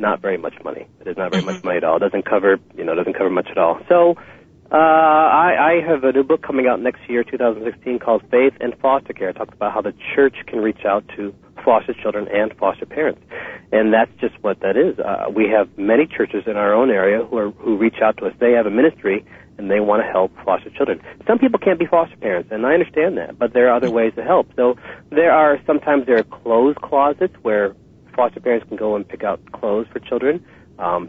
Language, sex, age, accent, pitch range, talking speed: English, male, 40-59, American, 110-155 Hz, 240 wpm